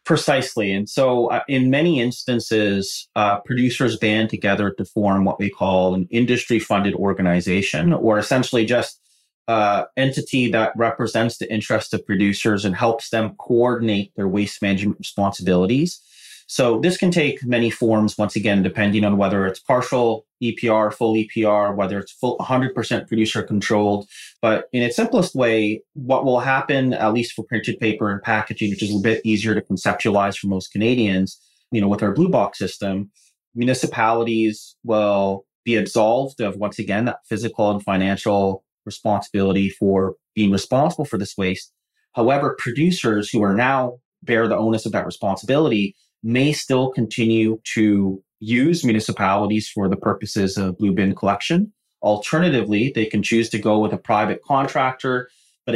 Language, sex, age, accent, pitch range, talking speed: English, male, 30-49, American, 100-120 Hz, 155 wpm